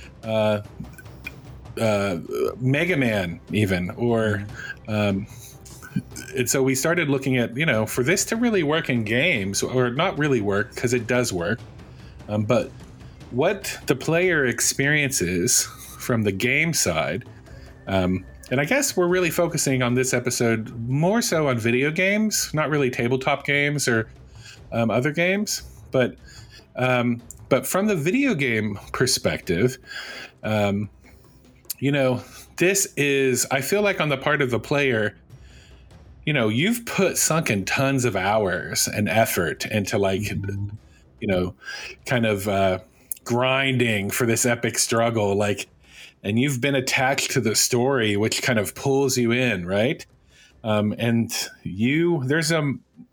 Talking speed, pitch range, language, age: 140 wpm, 105-140 Hz, English, 40-59